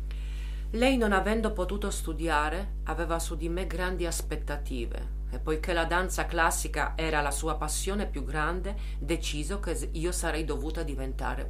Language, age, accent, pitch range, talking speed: Italian, 40-59, native, 135-180 Hz, 145 wpm